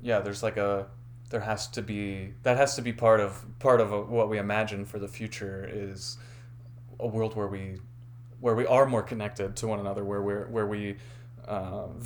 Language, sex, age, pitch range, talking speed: English, male, 20-39, 105-120 Hz, 205 wpm